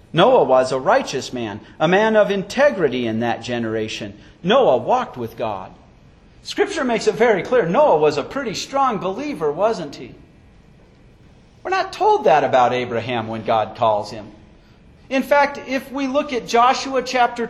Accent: American